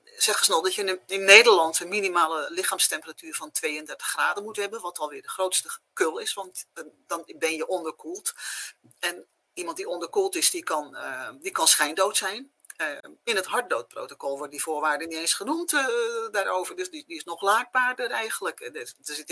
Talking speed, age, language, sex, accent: 185 wpm, 40-59, Dutch, female, Dutch